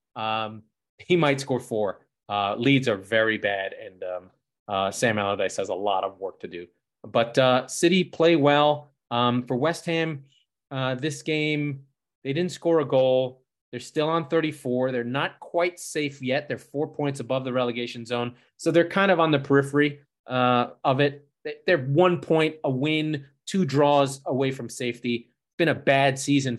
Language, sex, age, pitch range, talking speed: English, male, 30-49, 120-150 Hz, 180 wpm